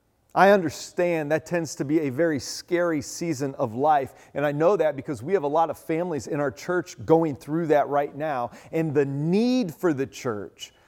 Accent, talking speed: American, 205 wpm